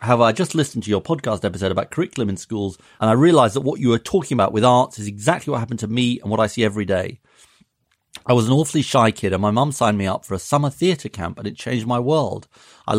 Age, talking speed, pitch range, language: 40-59, 270 wpm, 105-135 Hz, English